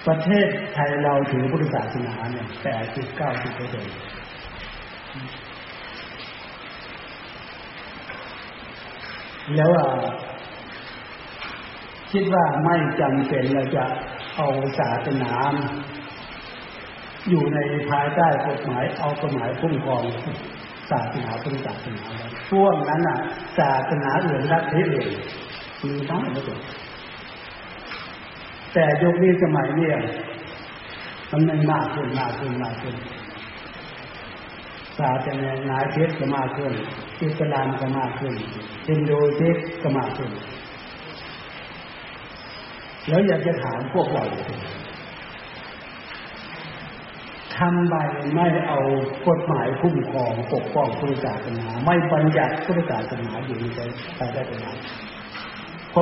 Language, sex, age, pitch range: Thai, male, 60-79, 125-155 Hz